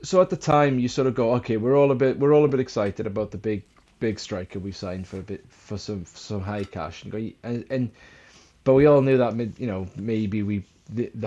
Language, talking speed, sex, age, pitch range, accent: English, 265 wpm, male, 30-49, 105-125 Hz, British